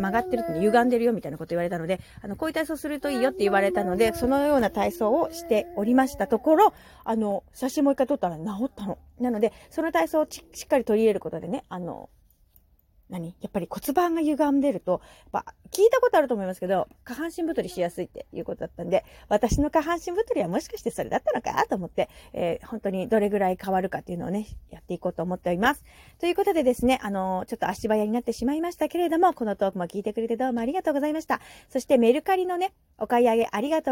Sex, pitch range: female, 195-280 Hz